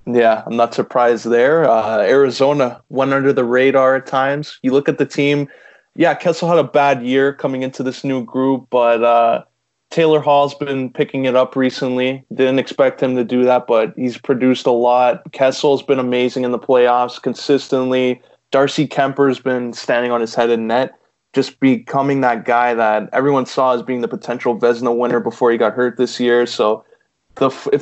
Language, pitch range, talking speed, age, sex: English, 120-135 Hz, 185 wpm, 20-39, male